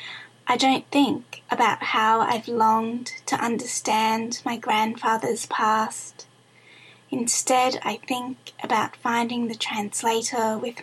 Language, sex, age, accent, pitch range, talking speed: English, female, 20-39, Australian, 225-255 Hz, 110 wpm